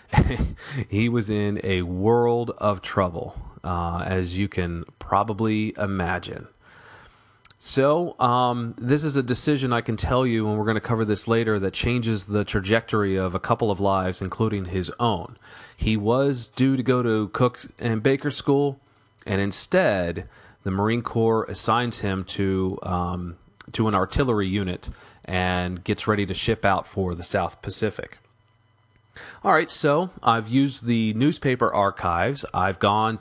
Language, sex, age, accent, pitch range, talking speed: English, male, 30-49, American, 95-120 Hz, 155 wpm